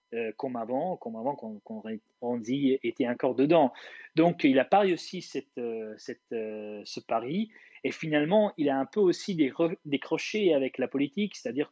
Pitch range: 125-170 Hz